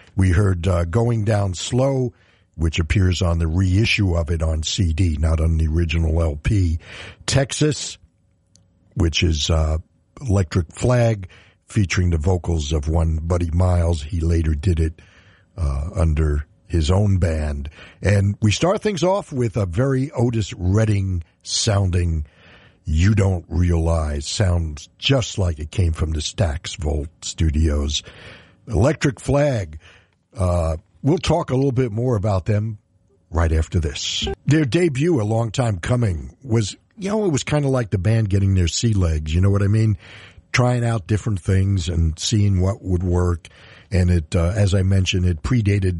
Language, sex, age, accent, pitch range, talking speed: English, male, 60-79, American, 85-110 Hz, 160 wpm